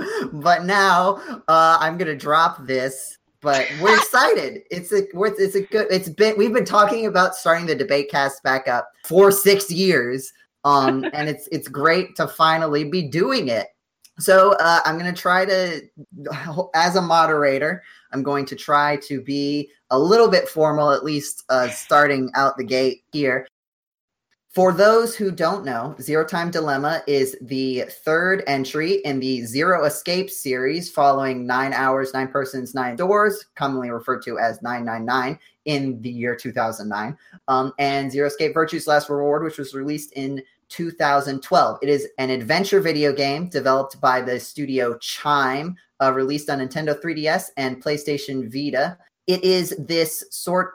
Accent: American